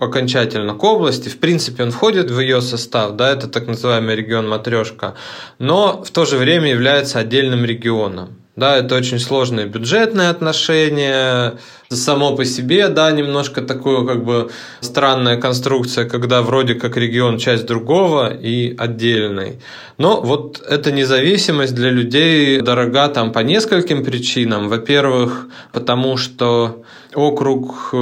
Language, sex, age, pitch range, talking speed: Russian, male, 20-39, 115-145 Hz, 135 wpm